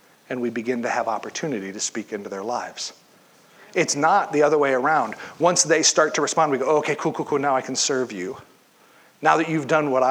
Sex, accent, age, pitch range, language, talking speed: male, American, 40-59, 125-155 Hz, English, 225 wpm